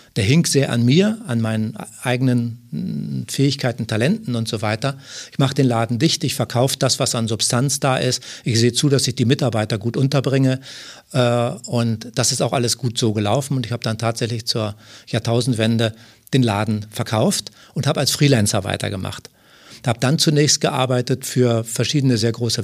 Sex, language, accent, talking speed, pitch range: male, German, German, 180 wpm, 115-140 Hz